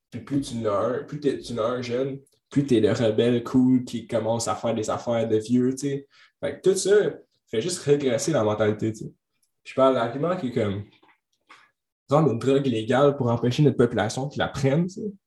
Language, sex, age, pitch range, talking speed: French, male, 20-39, 115-145 Hz, 195 wpm